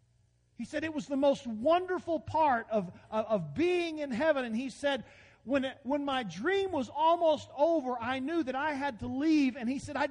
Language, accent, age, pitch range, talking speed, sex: English, American, 40-59, 200-300 Hz, 215 wpm, male